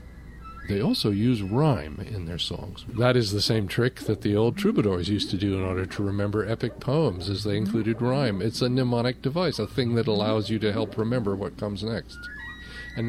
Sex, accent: male, American